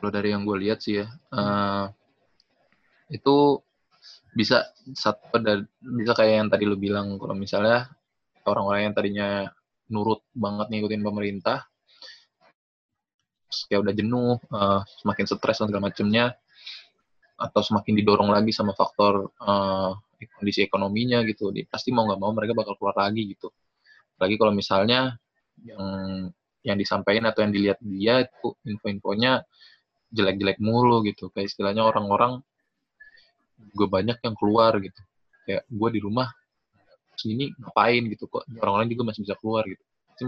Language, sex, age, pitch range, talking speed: Indonesian, male, 20-39, 100-120 Hz, 140 wpm